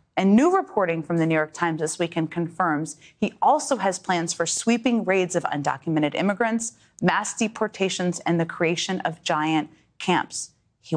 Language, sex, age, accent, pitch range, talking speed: English, female, 30-49, American, 185-270 Hz, 165 wpm